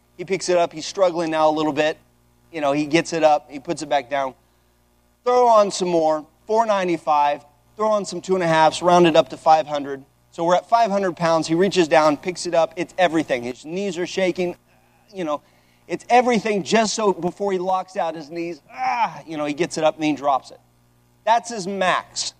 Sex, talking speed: male, 215 wpm